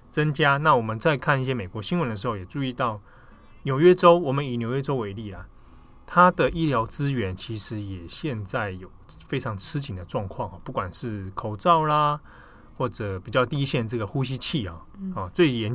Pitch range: 105-150 Hz